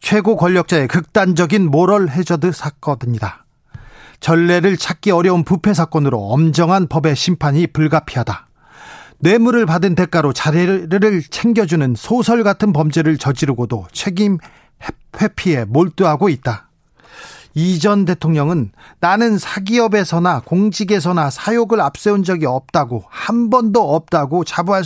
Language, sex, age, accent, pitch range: Korean, male, 40-59, native, 155-200 Hz